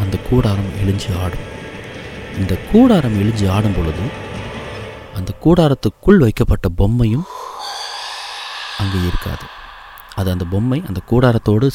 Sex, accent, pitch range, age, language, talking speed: male, native, 95-115 Hz, 30-49, Tamil, 95 wpm